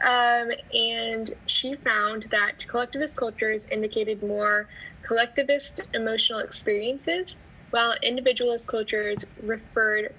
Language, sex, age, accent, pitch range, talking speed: English, female, 10-29, American, 215-250 Hz, 95 wpm